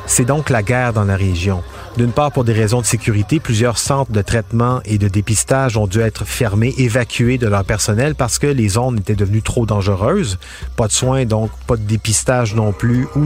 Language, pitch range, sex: French, 105-130 Hz, male